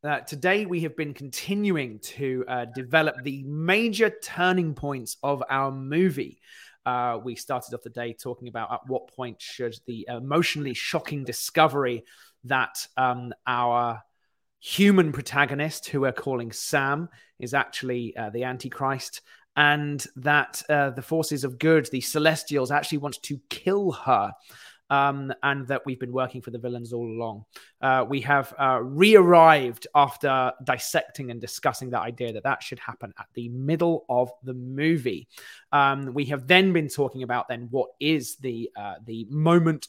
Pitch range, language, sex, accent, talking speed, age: 125-155 Hz, English, male, British, 160 wpm, 30-49